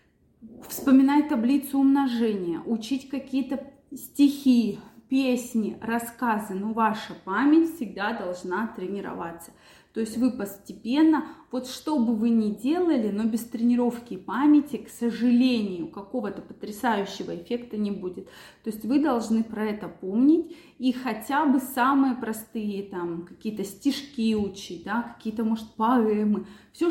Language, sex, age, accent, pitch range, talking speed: Russian, female, 20-39, native, 205-255 Hz, 125 wpm